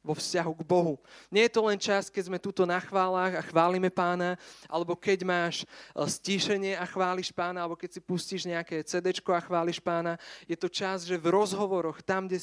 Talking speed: 200 wpm